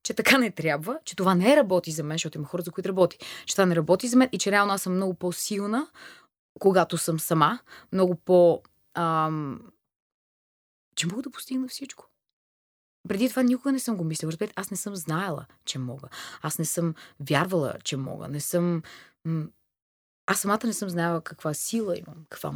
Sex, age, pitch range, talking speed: female, 20-39, 150-195 Hz, 185 wpm